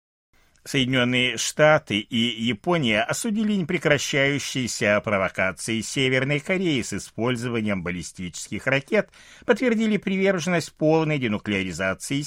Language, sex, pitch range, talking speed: Russian, male, 100-160 Hz, 85 wpm